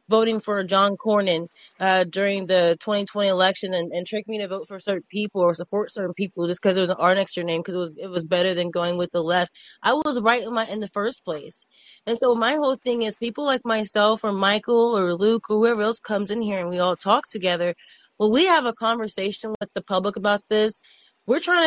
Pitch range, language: 195-230 Hz, English